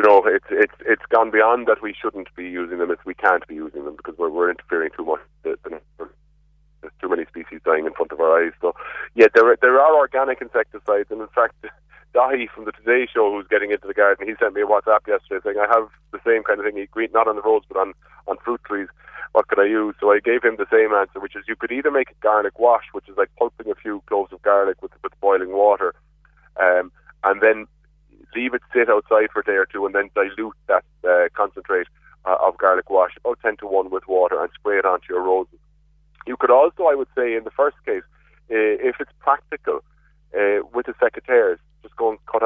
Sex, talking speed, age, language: male, 240 wpm, 30-49, English